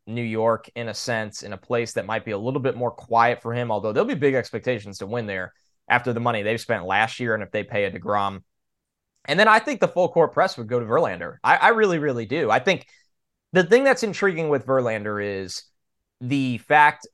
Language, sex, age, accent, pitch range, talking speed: English, male, 20-39, American, 115-160 Hz, 240 wpm